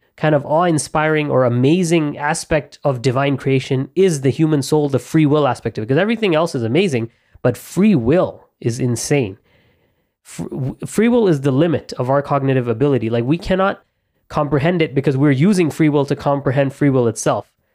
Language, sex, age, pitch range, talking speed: English, male, 20-39, 125-160 Hz, 180 wpm